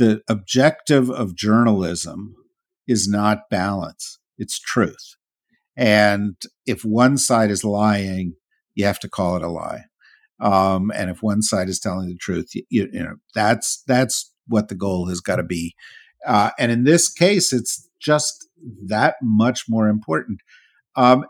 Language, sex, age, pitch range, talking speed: English, male, 50-69, 105-140 Hz, 155 wpm